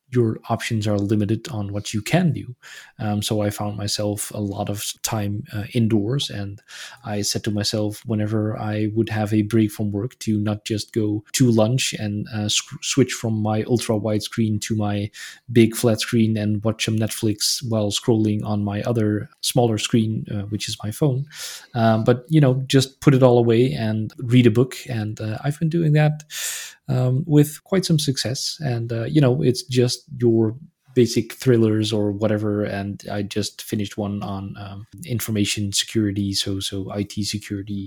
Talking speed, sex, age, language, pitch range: 180 wpm, male, 20-39, English, 105-125 Hz